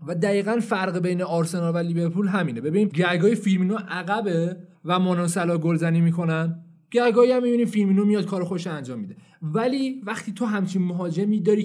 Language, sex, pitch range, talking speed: Persian, male, 160-205 Hz, 170 wpm